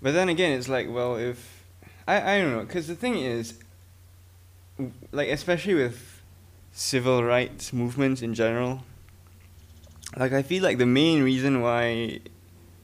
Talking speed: 145 wpm